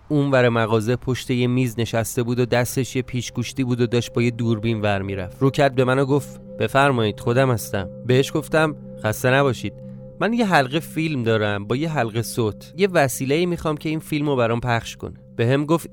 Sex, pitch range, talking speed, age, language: male, 110-140 Hz, 195 wpm, 30-49, Persian